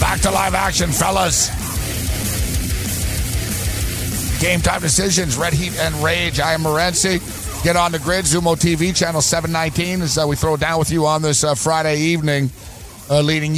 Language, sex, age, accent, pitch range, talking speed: English, male, 50-69, American, 125-160 Hz, 160 wpm